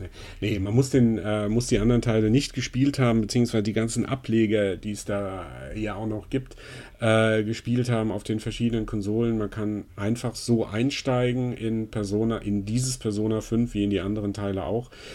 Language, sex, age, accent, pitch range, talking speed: German, male, 40-59, German, 105-125 Hz, 185 wpm